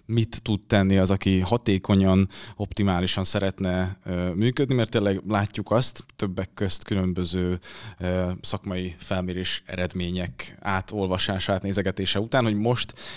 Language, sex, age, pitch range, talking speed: Hungarian, male, 20-39, 95-110 Hz, 120 wpm